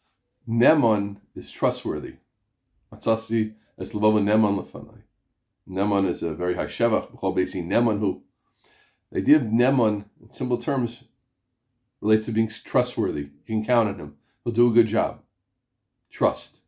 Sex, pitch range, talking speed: male, 100-125 Hz, 110 wpm